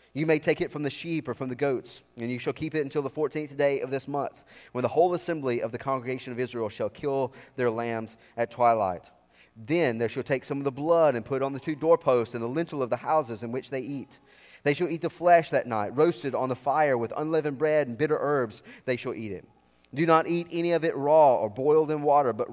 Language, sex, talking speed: English, male, 255 wpm